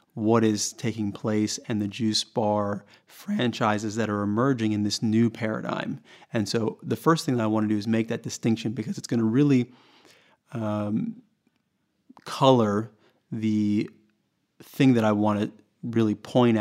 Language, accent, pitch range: English, American, 105-120 Hz